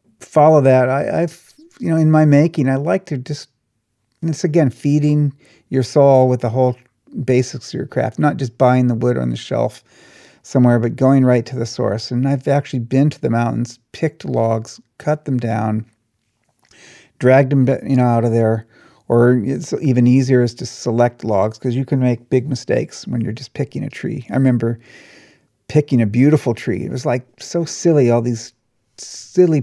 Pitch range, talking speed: 120-140 Hz, 190 wpm